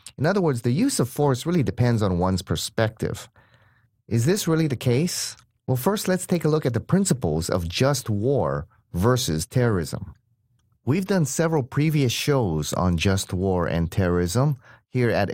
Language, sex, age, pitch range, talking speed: English, male, 30-49, 95-135 Hz, 170 wpm